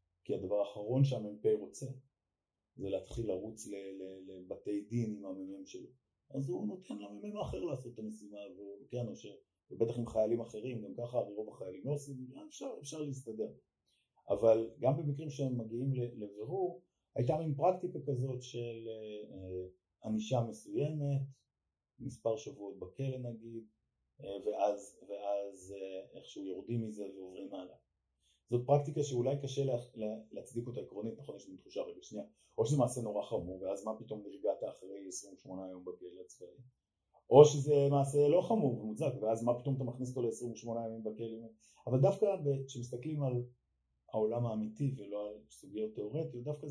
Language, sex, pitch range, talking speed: Hebrew, male, 100-135 Hz, 155 wpm